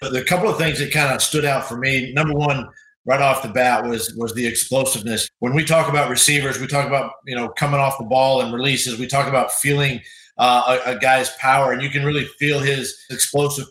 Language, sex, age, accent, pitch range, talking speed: English, male, 40-59, American, 130-155 Hz, 235 wpm